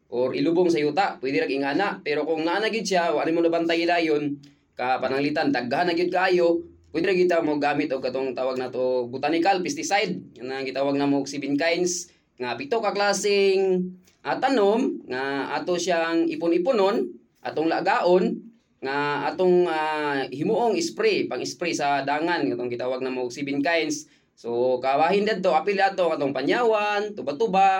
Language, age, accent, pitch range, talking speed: Filipino, 20-39, native, 145-190 Hz, 155 wpm